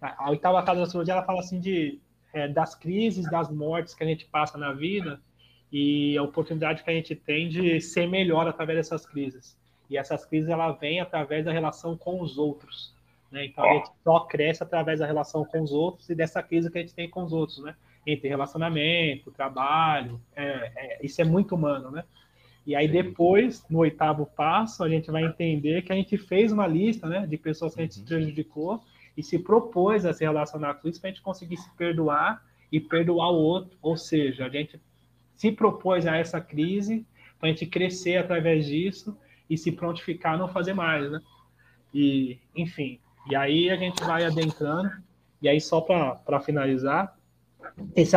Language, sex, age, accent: Portuguese, male, 20-39, Brazilian